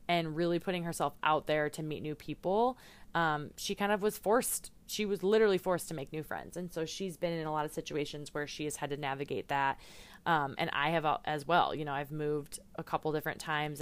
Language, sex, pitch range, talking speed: English, female, 145-180 Hz, 240 wpm